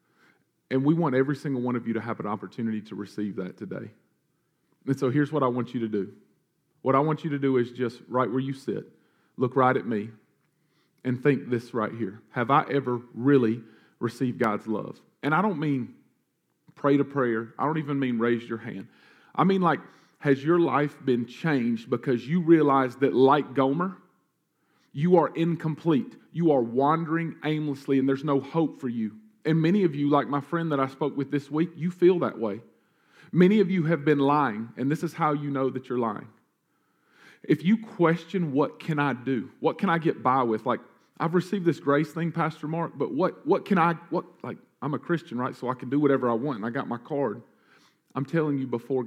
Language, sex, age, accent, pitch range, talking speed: English, male, 40-59, American, 125-155 Hz, 215 wpm